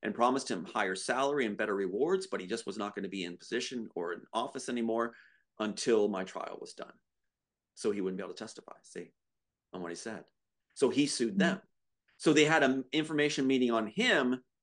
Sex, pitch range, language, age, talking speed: male, 95-150 Hz, English, 30-49, 210 wpm